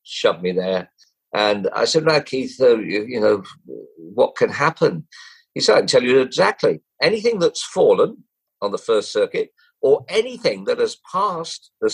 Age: 50-69